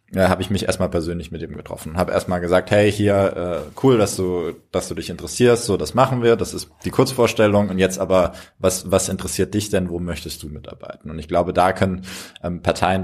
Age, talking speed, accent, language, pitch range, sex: 20-39, 220 wpm, German, German, 85-105 Hz, male